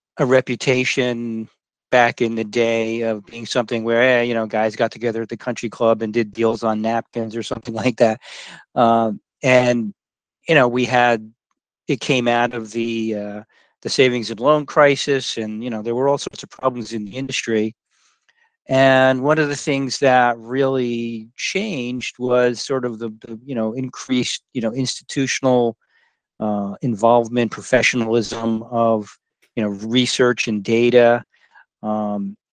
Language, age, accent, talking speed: English, 40-59, American, 160 wpm